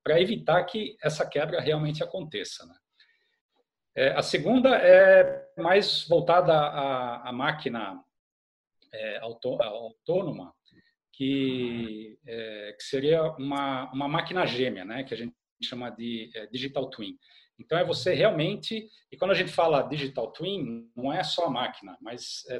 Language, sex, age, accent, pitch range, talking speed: Portuguese, male, 40-59, Brazilian, 130-185 Hz, 120 wpm